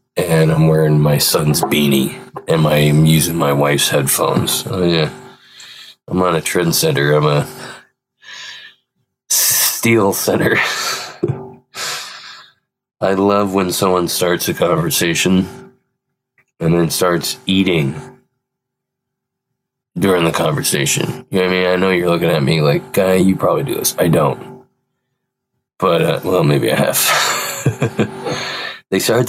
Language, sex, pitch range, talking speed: English, male, 90-100 Hz, 135 wpm